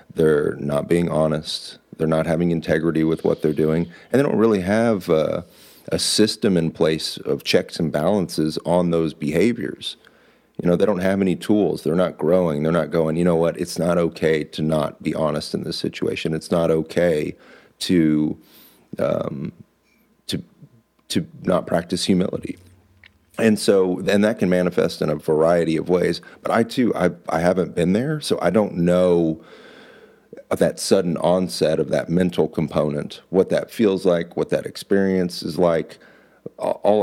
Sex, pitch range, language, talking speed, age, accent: male, 80-90 Hz, English, 170 wpm, 40-59, American